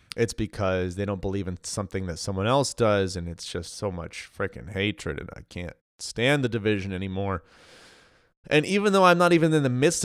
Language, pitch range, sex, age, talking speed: English, 95-125 Hz, male, 20-39, 205 wpm